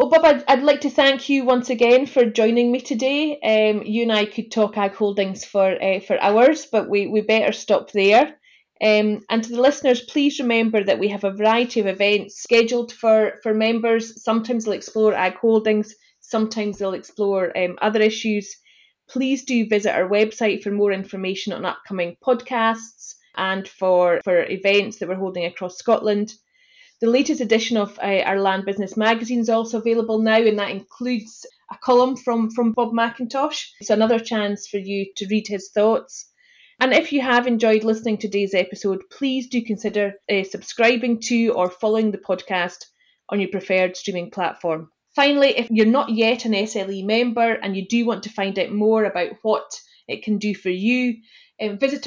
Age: 30-49